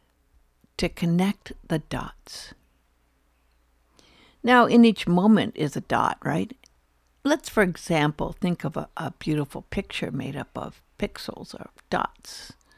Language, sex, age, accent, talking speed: English, female, 60-79, American, 125 wpm